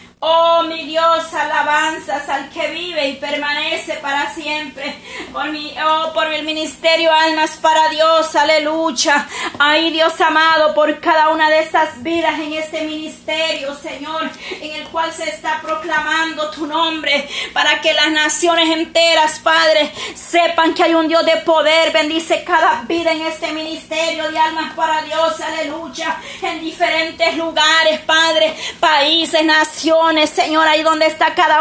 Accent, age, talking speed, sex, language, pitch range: American, 30-49, 140 wpm, female, Spanish, 315-330 Hz